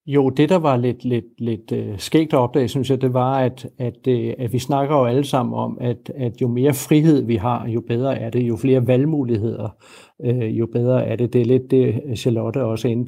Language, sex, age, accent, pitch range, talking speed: Danish, male, 60-79, native, 120-140 Hz, 225 wpm